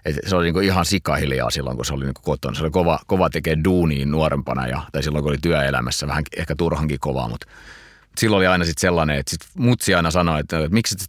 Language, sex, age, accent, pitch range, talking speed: Finnish, male, 30-49, native, 75-90 Hz, 245 wpm